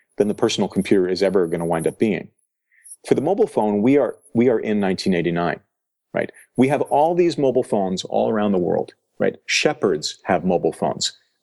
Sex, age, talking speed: male, 40-59, 195 wpm